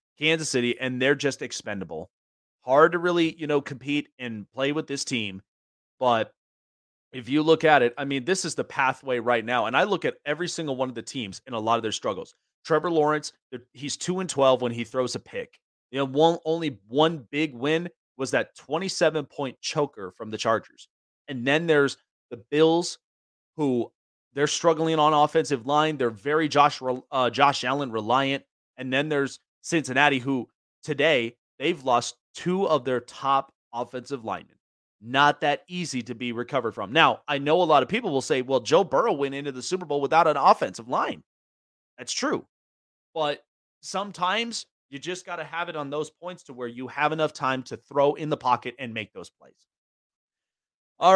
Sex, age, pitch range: male, 30-49, 125-155 Hz